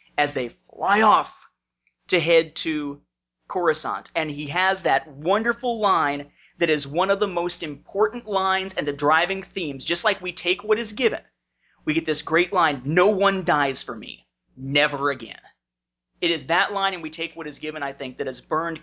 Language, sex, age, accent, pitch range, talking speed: English, male, 30-49, American, 140-170 Hz, 190 wpm